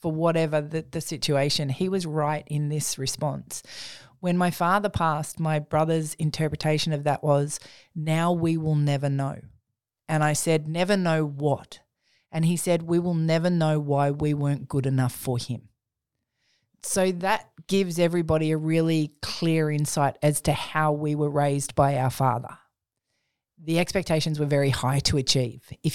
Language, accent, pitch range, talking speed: English, Australian, 140-170 Hz, 165 wpm